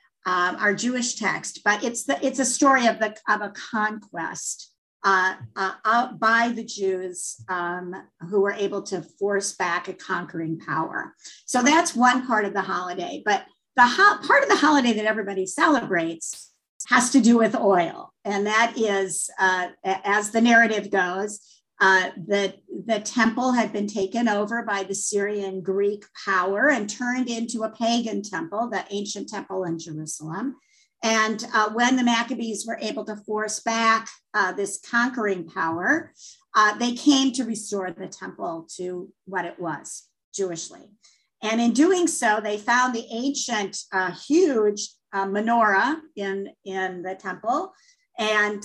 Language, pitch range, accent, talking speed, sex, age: English, 190-240 Hz, American, 155 wpm, female, 50-69